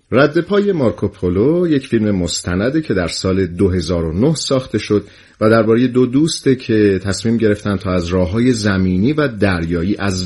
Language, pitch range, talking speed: Persian, 95-135 Hz, 150 wpm